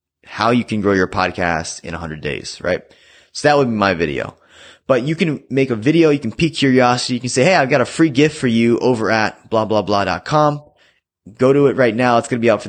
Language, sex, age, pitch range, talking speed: English, male, 20-39, 95-125 Hz, 235 wpm